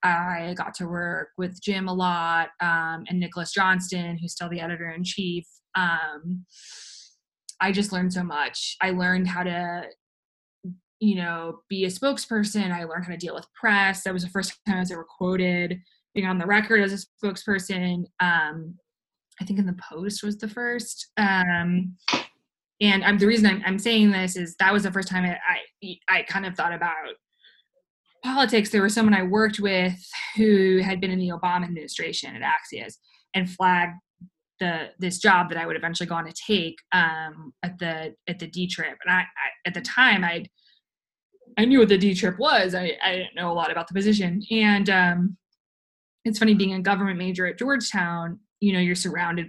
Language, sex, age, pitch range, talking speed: English, female, 20-39, 175-205 Hz, 190 wpm